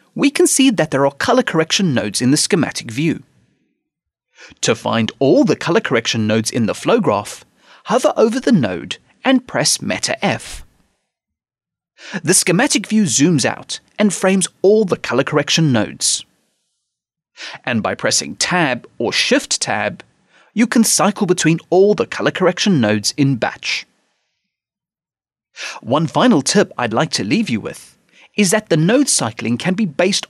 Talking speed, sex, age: 155 wpm, male, 30-49